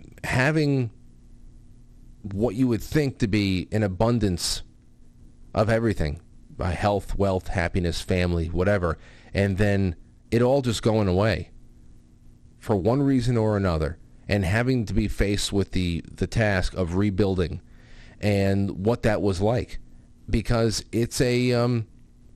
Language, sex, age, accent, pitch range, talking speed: English, male, 30-49, American, 90-120 Hz, 130 wpm